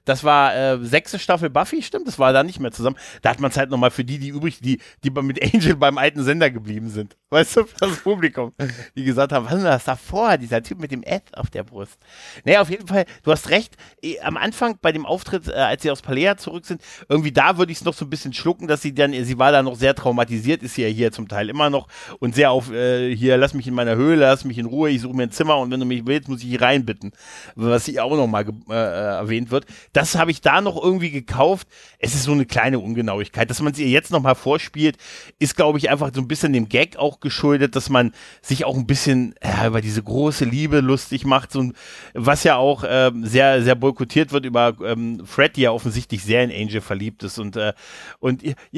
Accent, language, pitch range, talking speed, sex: German, German, 120-150 Hz, 250 wpm, male